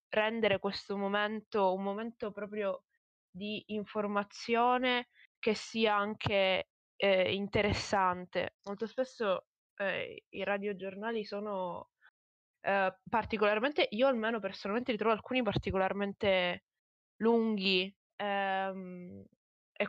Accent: native